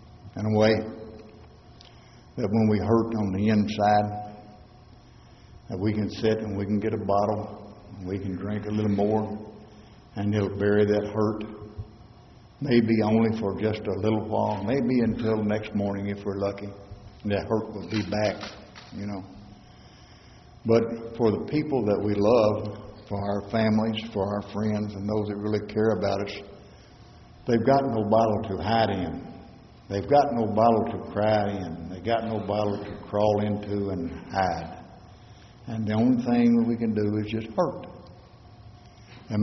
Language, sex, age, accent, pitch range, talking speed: English, male, 60-79, American, 100-110 Hz, 165 wpm